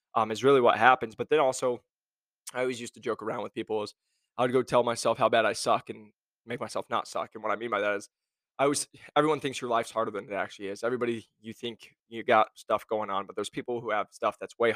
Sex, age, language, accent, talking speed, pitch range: male, 20-39, English, American, 265 wpm, 105-120 Hz